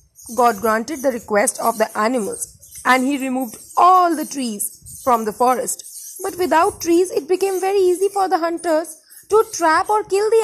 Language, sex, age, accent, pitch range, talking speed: Hindi, female, 20-39, native, 230-320 Hz, 180 wpm